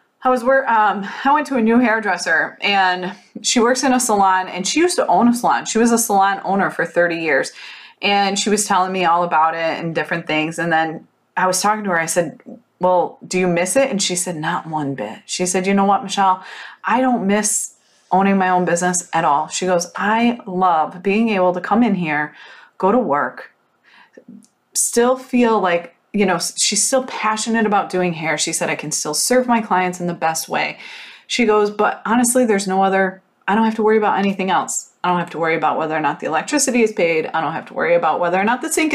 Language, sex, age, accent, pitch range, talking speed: English, female, 20-39, American, 180-235 Hz, 235 wpm